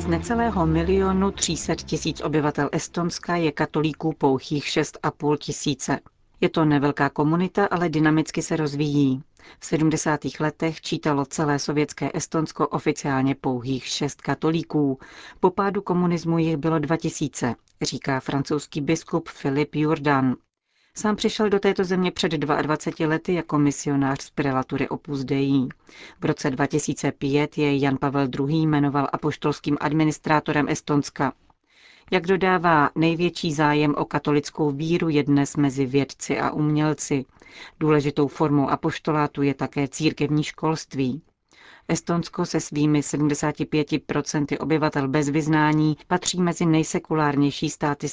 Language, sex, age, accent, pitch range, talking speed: Czech, female, 40-59, native, 145-160 Hz, 125 wpm